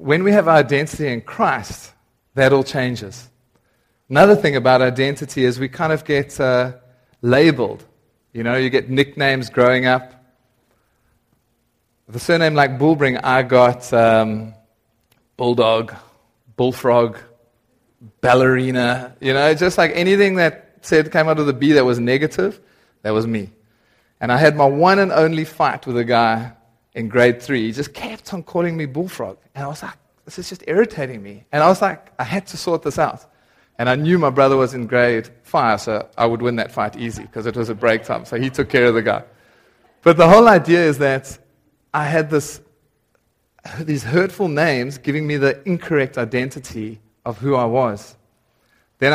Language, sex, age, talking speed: English, male, 30-49, 180 wpm